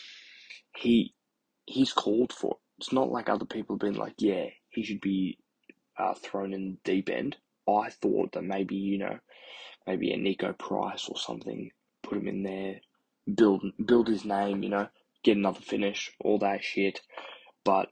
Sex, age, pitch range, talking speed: male, 10-29, 95-105 Hz, 175 wpm